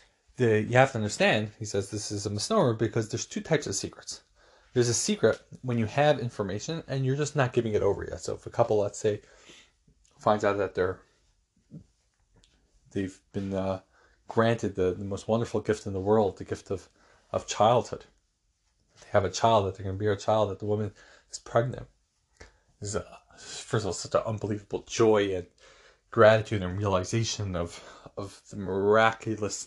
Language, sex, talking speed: English, male, 180 wpm